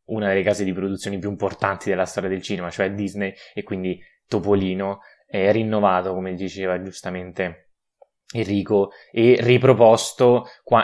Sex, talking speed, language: male, 140 wpm, Italian